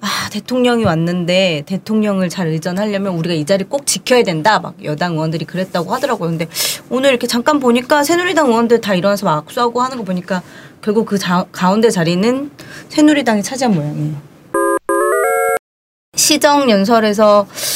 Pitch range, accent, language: 170-240 Hz, native, Korean